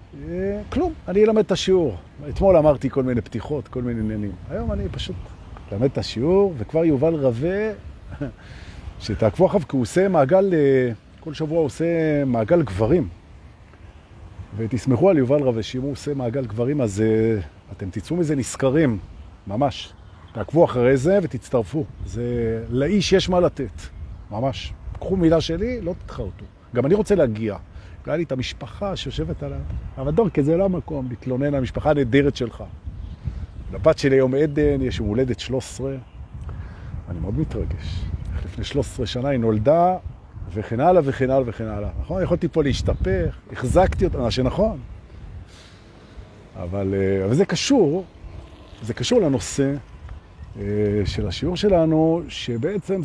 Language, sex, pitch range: Hebrew, male, 100-150 Hz